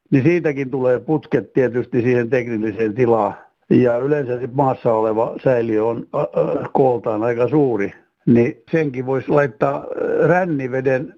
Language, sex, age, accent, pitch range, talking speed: Finnish, male, 60-79, native, 120-150 Hz, 125 wpm